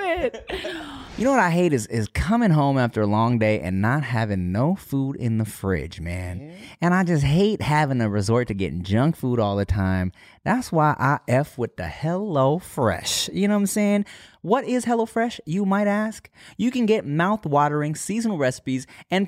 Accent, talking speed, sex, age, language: American, 190 wpm, male, 20-39, English